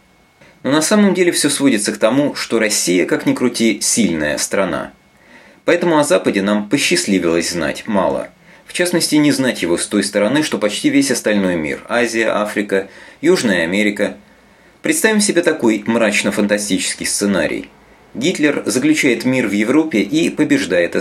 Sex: male